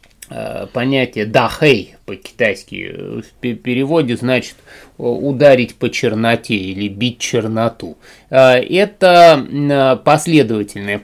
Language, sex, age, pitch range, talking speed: Russian, male, 20-39, 115-150 Hz, 75 wpm